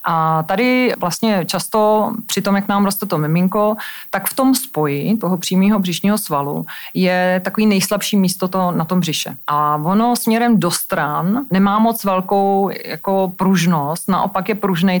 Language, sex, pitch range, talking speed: Czech, female, 175-205 Hz, 155 wpm